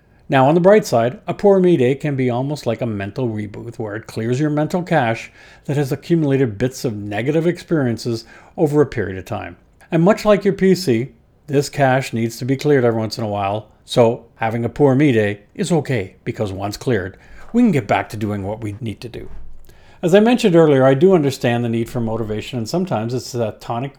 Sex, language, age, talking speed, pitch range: male, English, 50-69, 220 wpm, 110-155 Hz